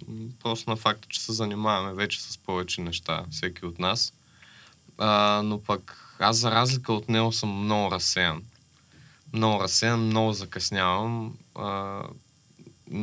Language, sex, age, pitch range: Bulgarian, male, 20-39, 95-120 Hz